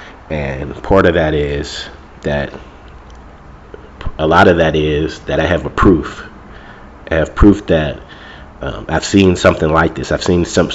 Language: English